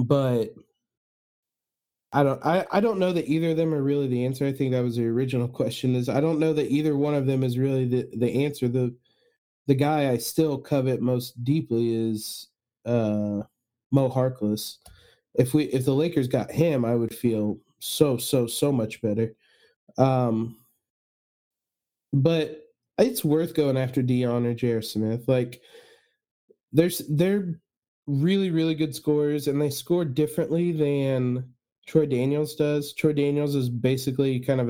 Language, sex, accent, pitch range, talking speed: English, male, American, 125-150 Hz, 165 wpm